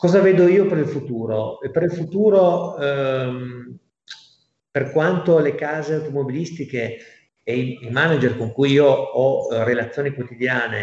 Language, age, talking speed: Italian, 40-59, 140 wpm